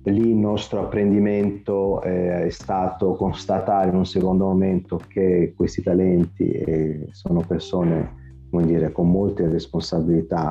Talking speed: 120 wpm